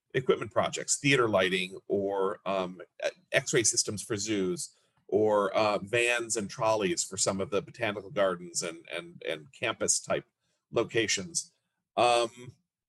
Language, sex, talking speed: English, male, 130 wpm